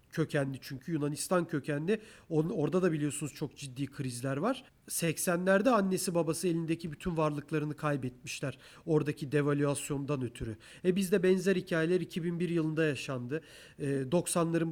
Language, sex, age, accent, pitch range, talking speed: Turkish, male, 40-59, native, 160-195 Hz, 120 wpm